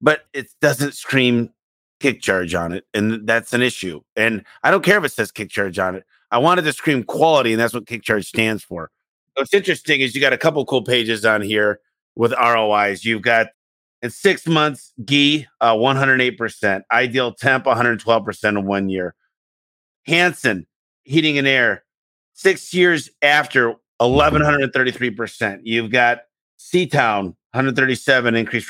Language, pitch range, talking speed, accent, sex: English, 110-140 Hz, 155 wpm, American, male